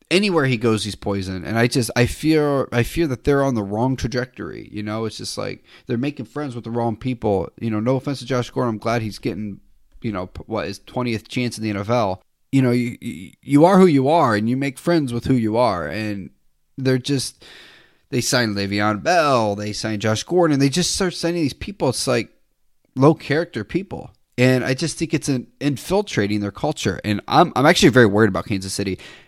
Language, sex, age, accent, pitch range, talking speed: English, male, 30-49, American, 105-145 Hz, 220 wpm